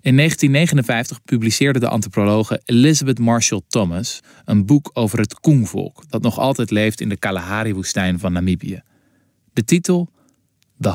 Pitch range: 100-125 Hz